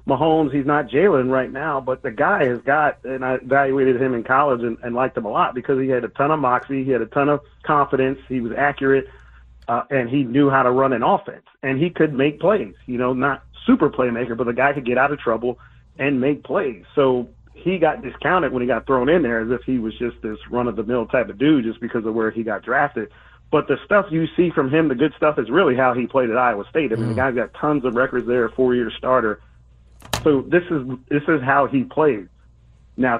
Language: English